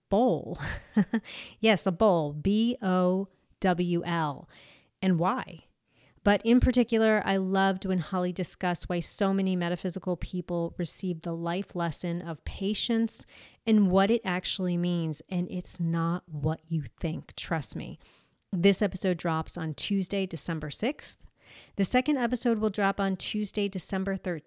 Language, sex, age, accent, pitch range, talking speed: English, female, 30-49, American, 175-210 Hz, 130 wpm